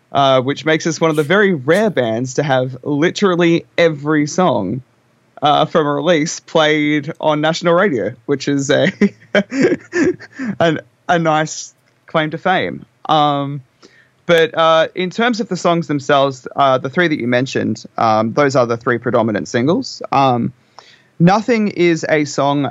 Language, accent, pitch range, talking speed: English, Australian, 125-160 Hz, 155 wpm